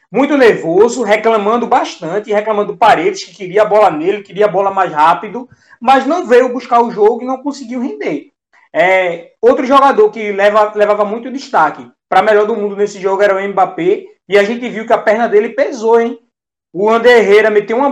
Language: Portuguese